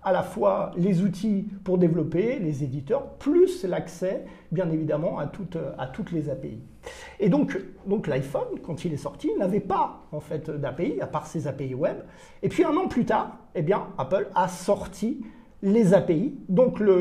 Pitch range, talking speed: 165-215 Hz, 185 wpm